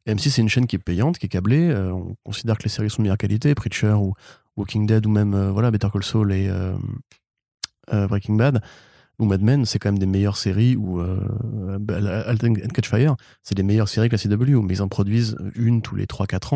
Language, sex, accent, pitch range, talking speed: French, male, French, 100-120 Hz, 235 wpm